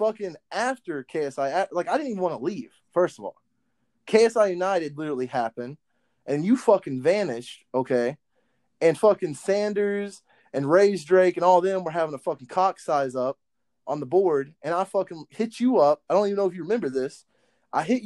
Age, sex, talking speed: 20-39, male, 190 wpm